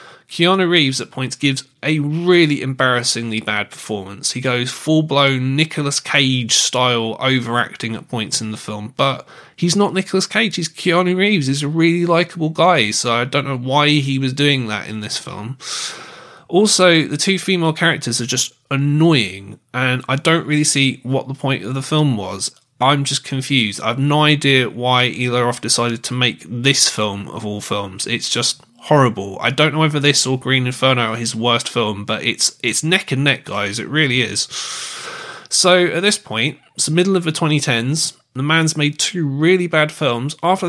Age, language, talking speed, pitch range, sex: 20-39, English, 185 wpm, 120-160 Hz, male